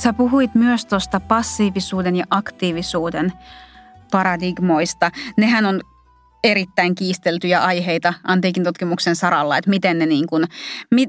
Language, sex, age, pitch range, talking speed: Finnish, female, 30-49, 175-210 Hz, 120 wpm